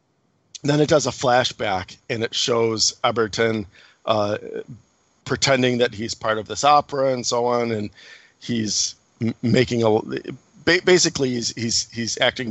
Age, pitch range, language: 40-59, 105-120 Hz, English